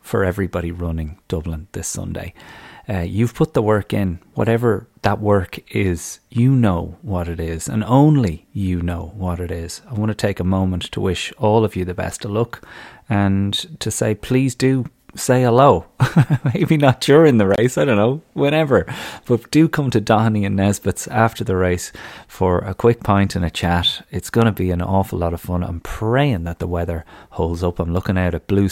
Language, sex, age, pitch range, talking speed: English, male, 30-49, 90-115 Hz, 205 wpm